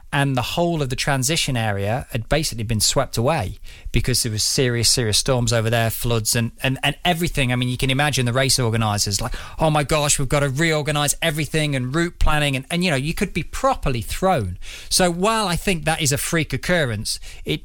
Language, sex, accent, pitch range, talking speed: English, male, British, 115-155 Hz, 220 wpm